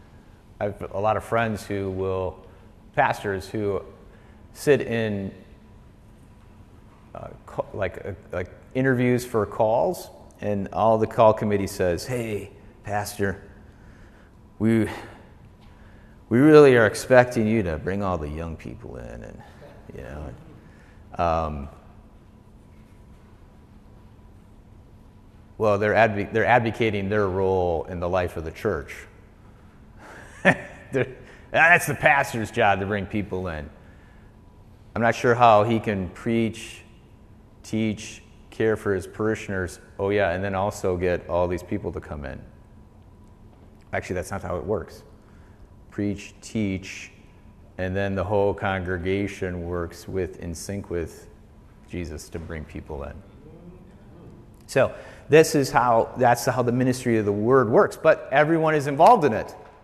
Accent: American